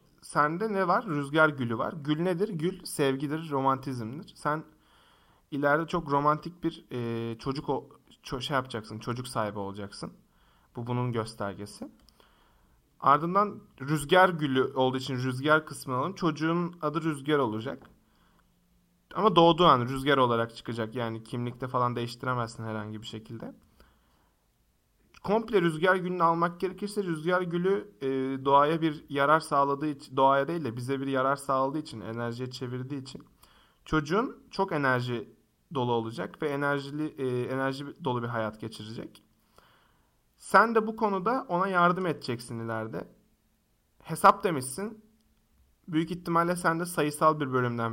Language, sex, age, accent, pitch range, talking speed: Turkish, male, 40-59, native, 120-170 Hz, 130 wpm